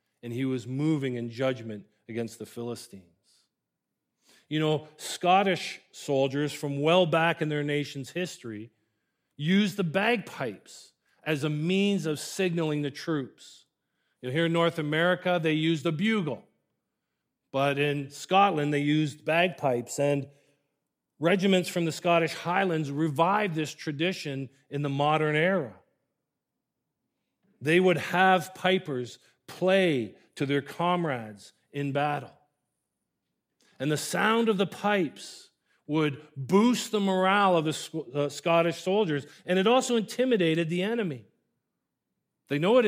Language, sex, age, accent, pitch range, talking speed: English, male, 40-59, American, 145-185 Hz, 125 wpm